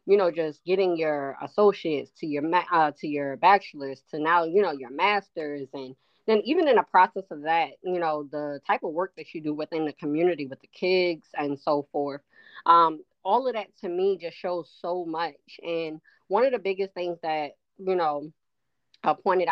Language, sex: English, female